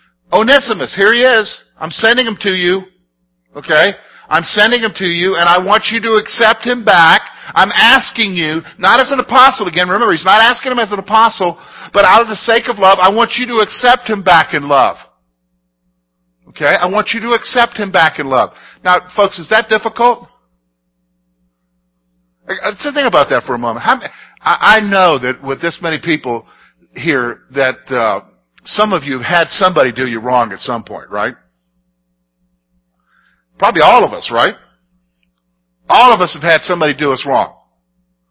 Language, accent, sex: English, American, male